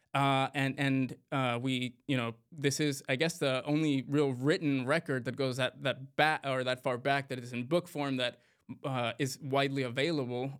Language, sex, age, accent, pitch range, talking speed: English, male, 20-39, American, 135-165 Hz, 180 wpm